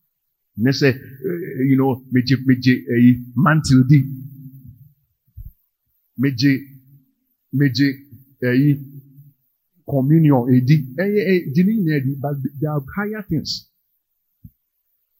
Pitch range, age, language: 105-155 Hz, 50-69, English